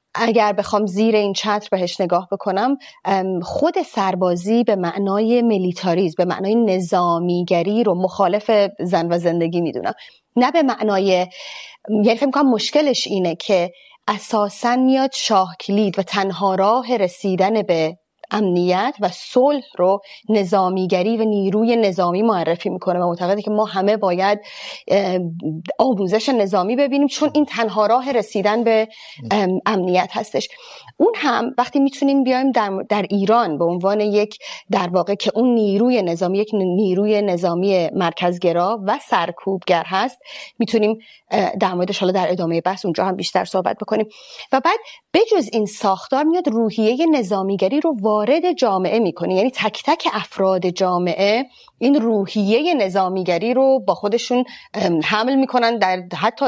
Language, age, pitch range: Urdu, 30-49, 185-235 Hz